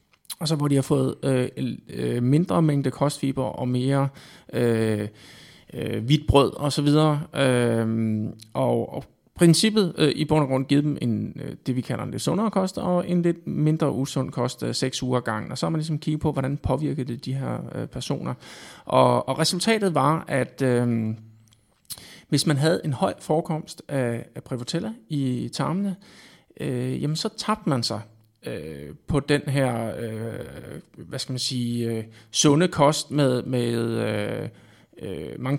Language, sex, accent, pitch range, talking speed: Danish, male, native, 115-150 Hz, 165 wpm